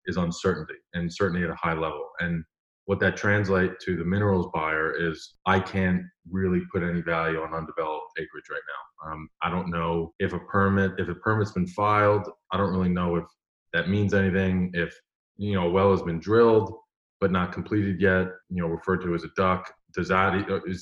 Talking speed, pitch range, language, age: 200 wpm, 90-100 Hz, English, 20-39